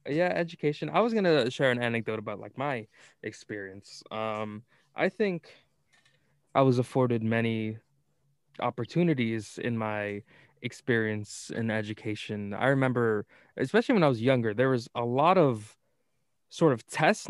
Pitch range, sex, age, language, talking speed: 115-135 Hz, male, 20-39, English, 140 wpm